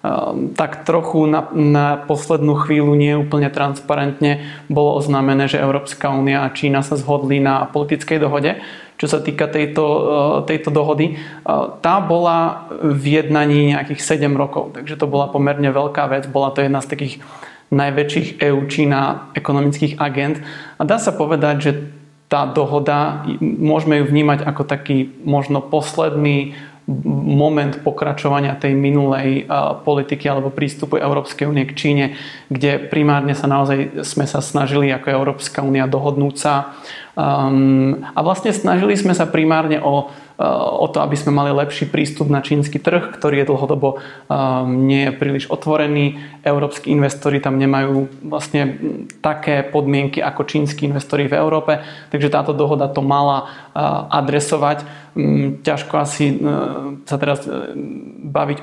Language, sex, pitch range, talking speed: Slovak, male, 140-150 Hz, 140 wpm